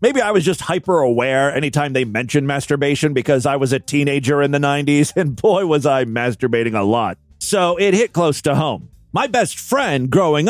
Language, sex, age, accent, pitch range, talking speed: English, male, 40-59, American, 135-190 Hz, 195 wpm